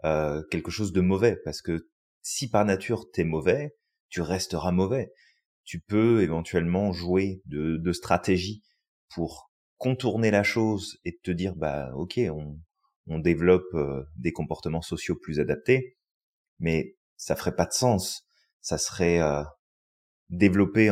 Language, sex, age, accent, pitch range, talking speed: French, male, 30-49, French, 80-105 Hz, 145 wpm